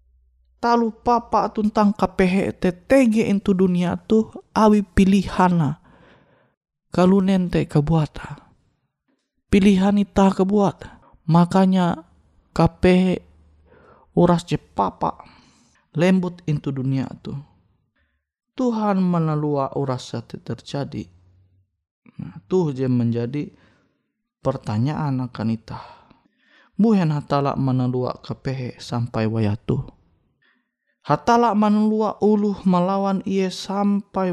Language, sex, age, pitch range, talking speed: Indonesian, male, 20-39, 140-200 Hz, 80 wpm